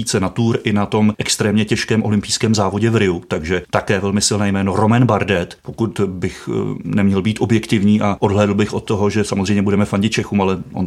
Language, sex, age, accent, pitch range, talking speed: Czech, male, 30-49, native, 105-120 Hz, 195 wpm